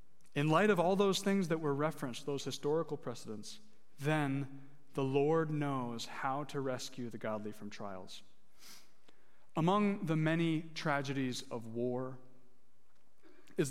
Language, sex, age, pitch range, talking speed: English, male, 30-49, 130-165 Hz, 130 wpm